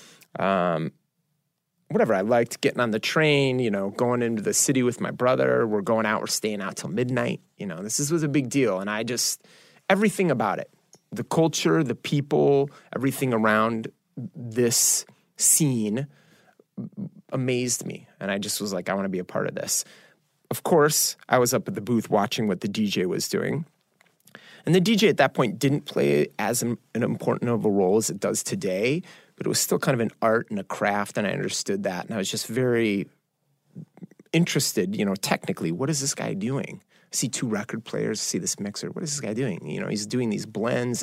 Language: English